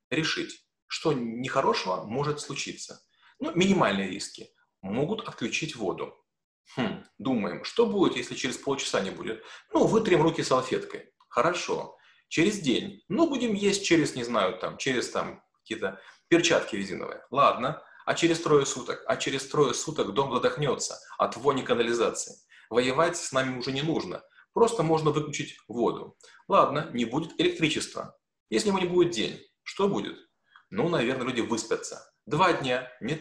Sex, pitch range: male, 135-200 Hz